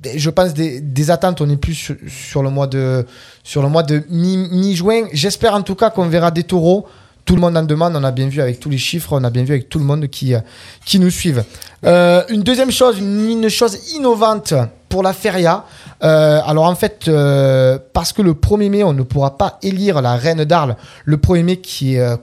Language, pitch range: French, 135-185 Hz